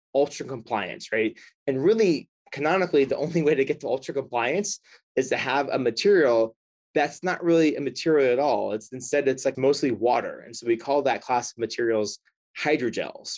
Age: 20-39